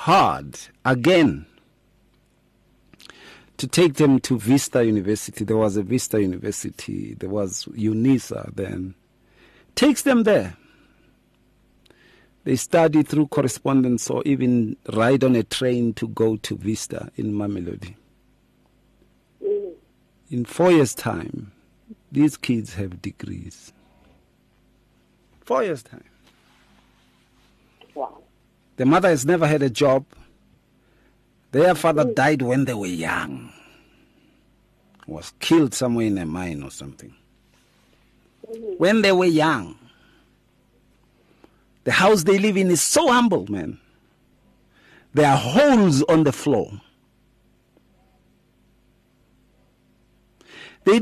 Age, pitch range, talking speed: 50-69, 110-175 Hz, 105 wpm